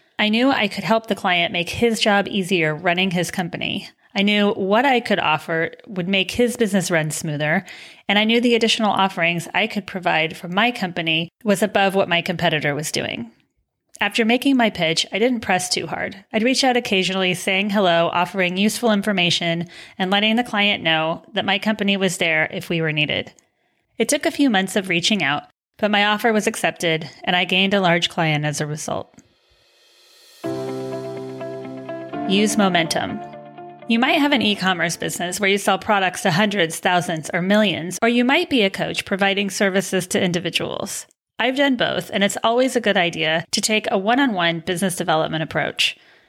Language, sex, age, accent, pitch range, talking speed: English, female, 30-49, American, 170-220 Hz, 185 wpm